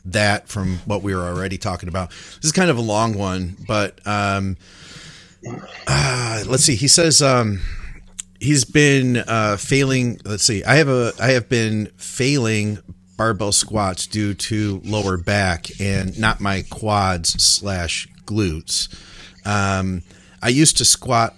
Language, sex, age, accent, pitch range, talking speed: English, male, 40-59, American, 95-115 Hz, 150 wpm